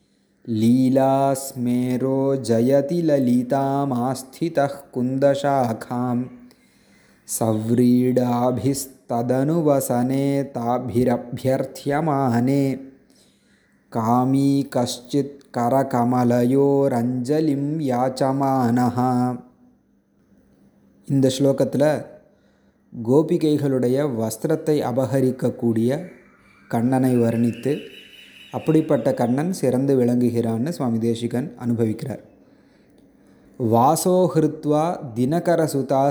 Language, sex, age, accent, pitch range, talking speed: Tamil, male, 30-49, native, 120-140 Hz, 45 wpm